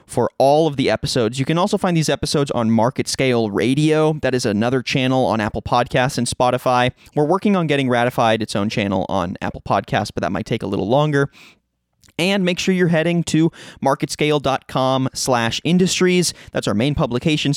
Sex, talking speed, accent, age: male, 190 wpm, American, 30-49